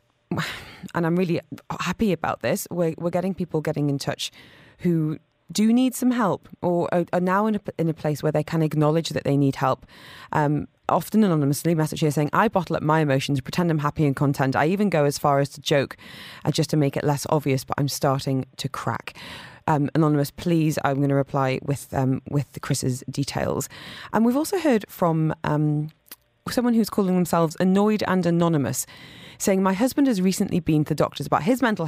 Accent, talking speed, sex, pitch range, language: British, 200 wpm, female, 140-180 Hz, English